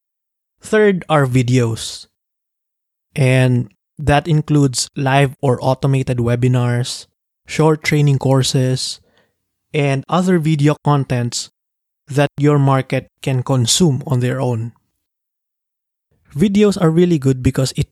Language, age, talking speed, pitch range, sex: English, 20-39, 105 wpm, 125-150 Hz, male